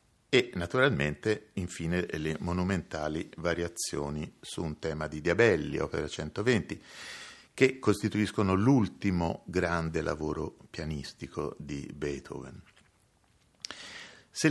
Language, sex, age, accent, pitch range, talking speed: Italian, male, 50-69, native, 80-105 Hz, 90 wpm